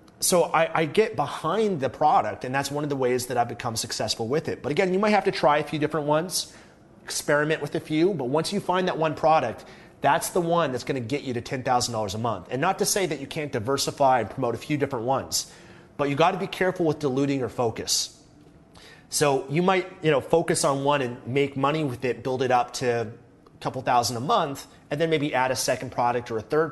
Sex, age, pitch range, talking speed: male, 30-49, 120-155 Hz, 240 wpm